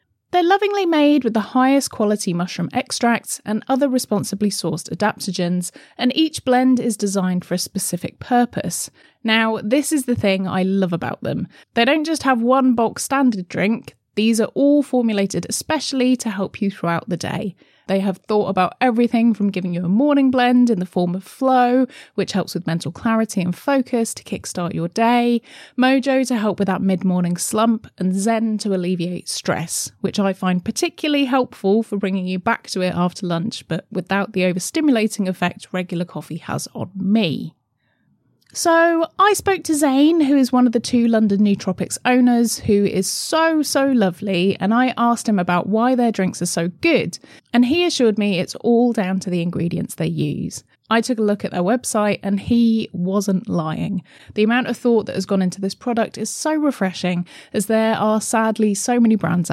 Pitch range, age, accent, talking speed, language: 185-245 Hz, 30-49, British, 185 wpm, English